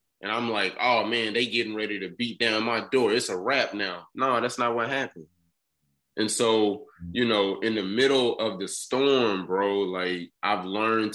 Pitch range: 95-115 Hz